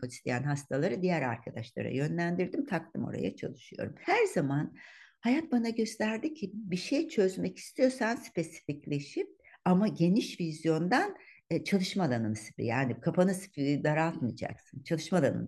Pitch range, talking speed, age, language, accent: 155-225 Hz, 110 wpm, 60-79, Turkish, native